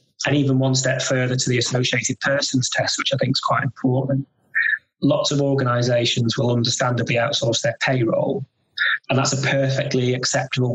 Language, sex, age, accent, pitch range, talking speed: English, male, 20-39, British, 120-140 Hz, 160 wpm